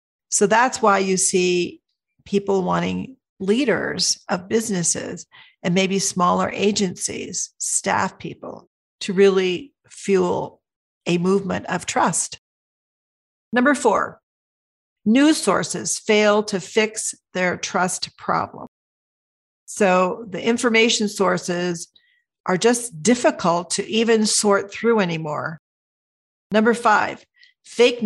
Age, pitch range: 50-69, 180-235 Hz